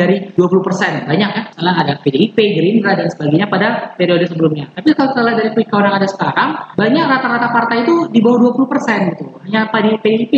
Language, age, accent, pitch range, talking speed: Indonesian, 20-39, native, 175-220 Hz, 185 wpm